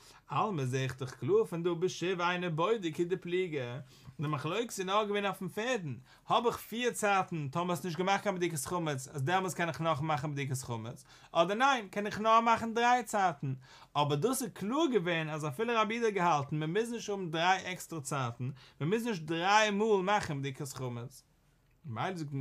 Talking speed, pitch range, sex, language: 200 wpm, 140-185 Hz, male, English